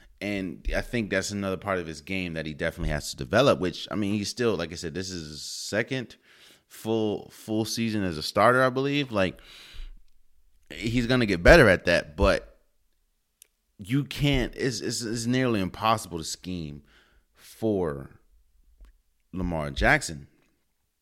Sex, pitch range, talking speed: male, 75-110 Hz, 160 wpm